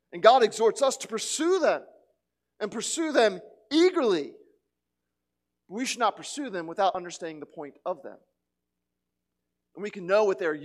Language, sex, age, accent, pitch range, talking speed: English, male, 40-59, American, 145-235 Hz, 160 wpm